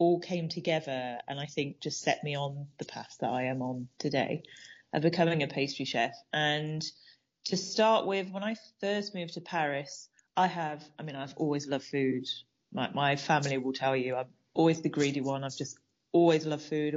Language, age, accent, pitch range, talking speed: English, 30-49, British, 145-170 Hz, 200 wpm